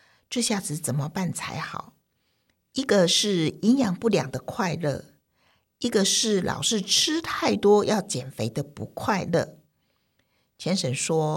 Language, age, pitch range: Chinese, 50-69, 155-220 Hz